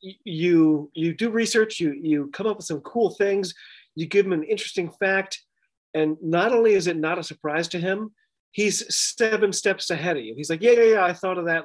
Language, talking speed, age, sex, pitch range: English, 220 wpm, 30-49, male, 155-205 Hz